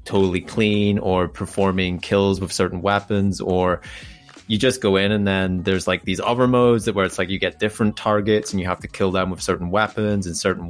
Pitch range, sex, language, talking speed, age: 90-100 Hz, male, English, 220 wpm, 20-39